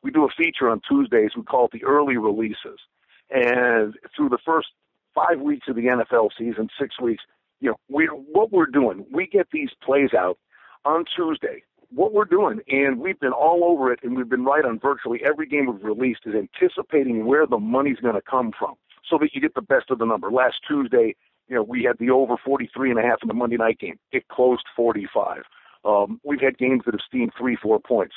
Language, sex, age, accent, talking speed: English, male, 50-69, American, 225 wpm